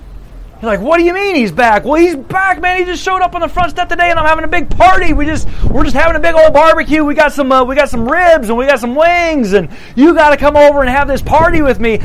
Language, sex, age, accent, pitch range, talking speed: English, male, 30-49, American, 220-310 Hz, 305 wpm